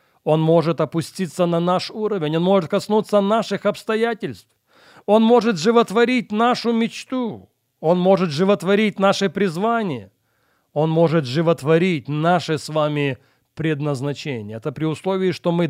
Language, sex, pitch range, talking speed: Russian, male, 155-205 Hz, 125 wpm